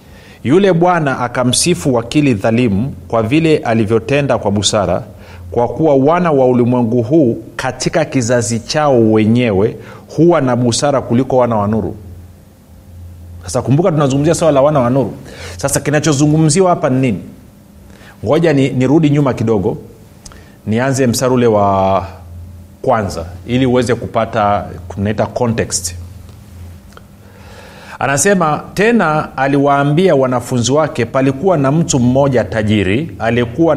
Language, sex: Swahili, male